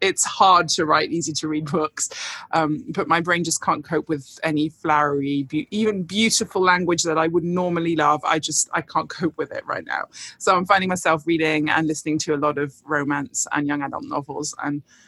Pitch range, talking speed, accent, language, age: 150-195 Hz, 205 wpm, British, English, 20-39